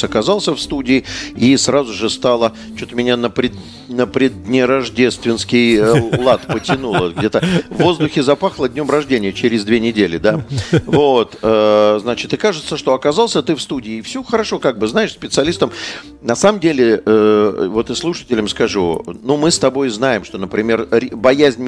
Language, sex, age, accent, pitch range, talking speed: Russian, male, 50-69, native, 110-135 Hz, 160 wpm